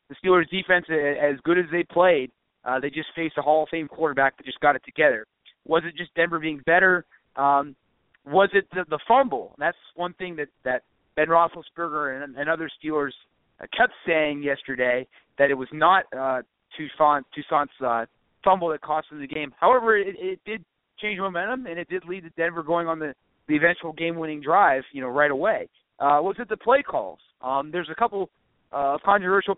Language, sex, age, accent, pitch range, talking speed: English, male, 30-49, American, 140-175 Hz, 200 wpm